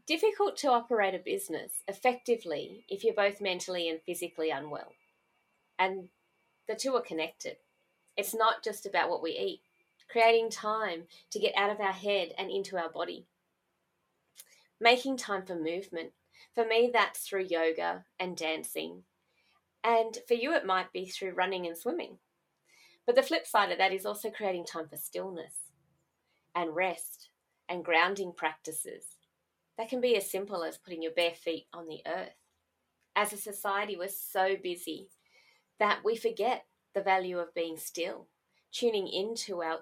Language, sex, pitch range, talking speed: English, female, 170-230 Hz, 160 wpm